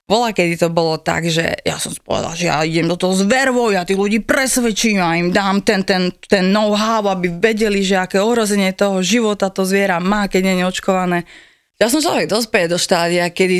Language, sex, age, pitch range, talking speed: Slovak, female, 20-39, 170-215 Hz, 205 wpm